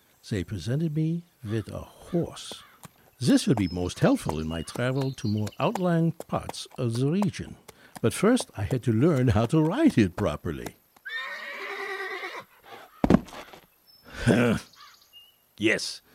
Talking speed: 125 wpm